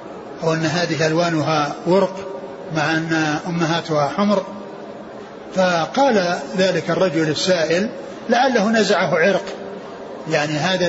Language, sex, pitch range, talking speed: Arabic, male, 160-200 Hz, 100 wpm